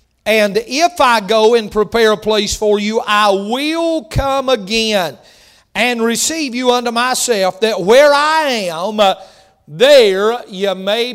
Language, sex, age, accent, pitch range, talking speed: English, male, 40-59, American, 215-250 Hz, 140 wpm